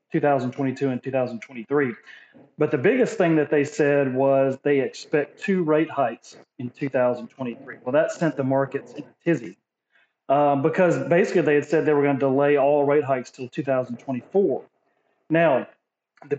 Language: English